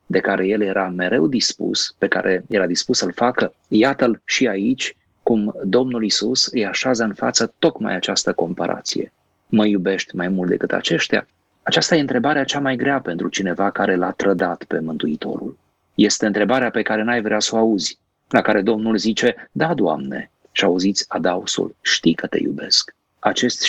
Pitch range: 100-135 Hz